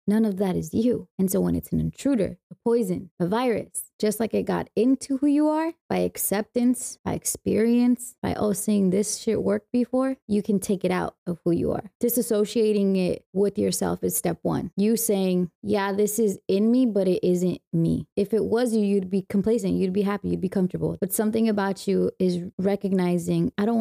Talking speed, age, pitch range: 210 wpm, 20-39, 185-225 Hz